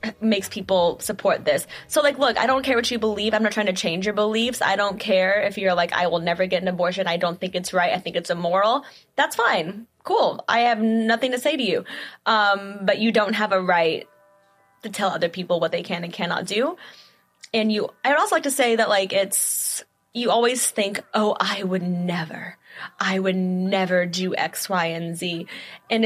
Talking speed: 215 wpm